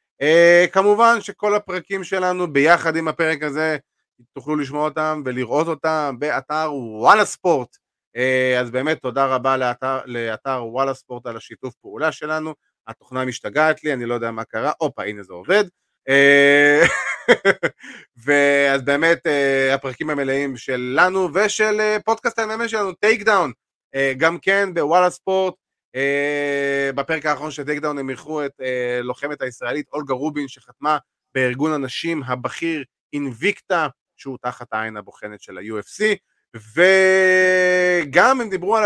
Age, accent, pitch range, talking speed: 30-49, native, 130-175 Hz, 135 wpm